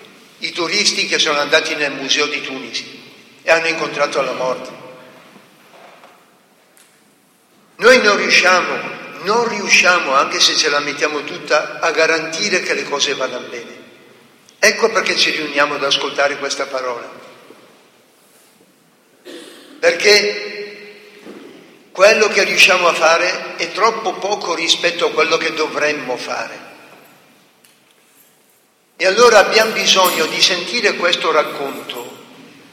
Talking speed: 115 wpm